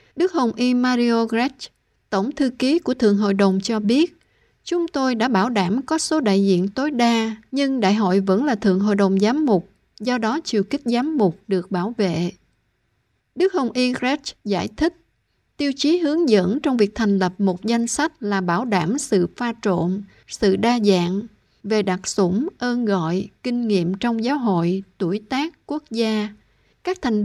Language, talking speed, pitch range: Vietnamese, 190 wpm, 200-255 Hz